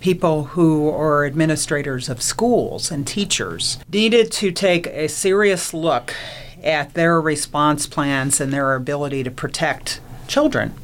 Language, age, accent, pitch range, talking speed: English, 40-59, American, 135-170 Hz, 135 wpm